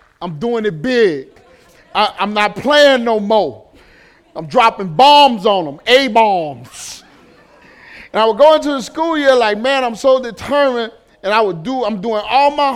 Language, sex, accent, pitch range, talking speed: English, male, American, 195-275 Hz, 180 wpm